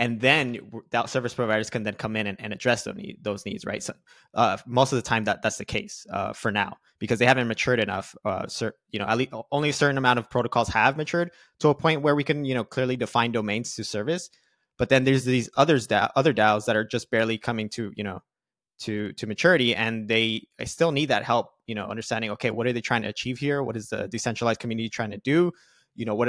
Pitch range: 110-125 Hz